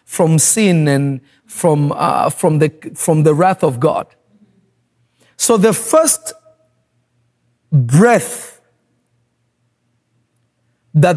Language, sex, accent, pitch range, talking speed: English, male, South African, 135-215 Hz, 90 wpm